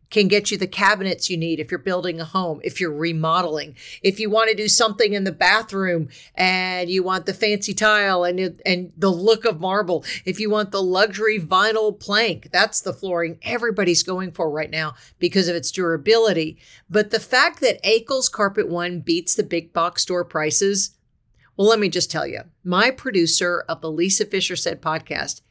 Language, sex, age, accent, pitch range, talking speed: English, female, 50-69, American, 170-215 Hz, 195 wpm